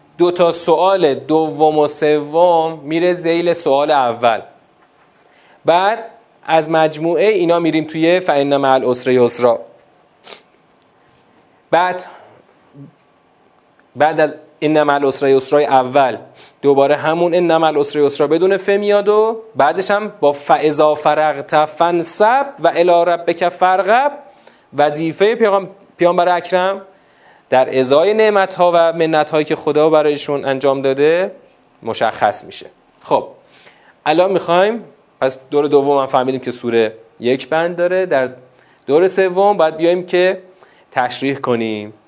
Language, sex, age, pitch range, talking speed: Persian, male, 30-49, 140-175 Hz, 125 wpm